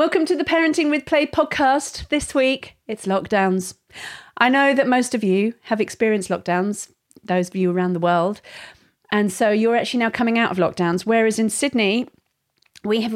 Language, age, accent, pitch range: English, 40-59, British, 180-245 Hz